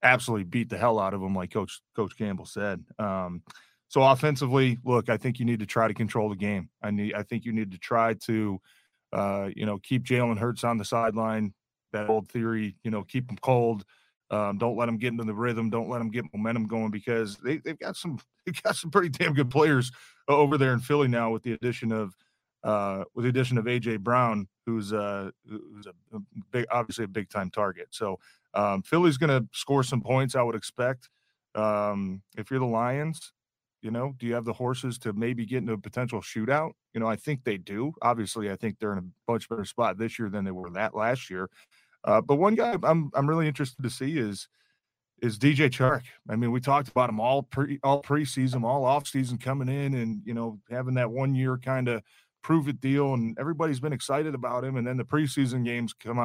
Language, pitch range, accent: English, 110-135 Hz, American